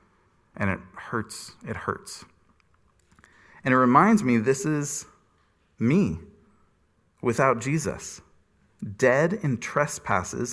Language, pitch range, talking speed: English, 105-160 Hz, 95 wpm